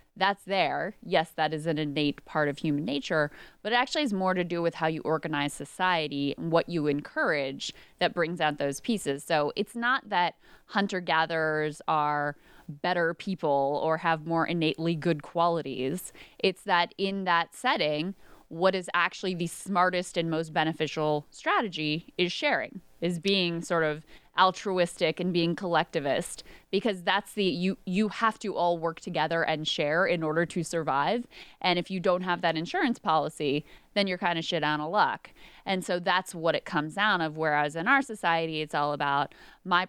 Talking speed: 180 wpm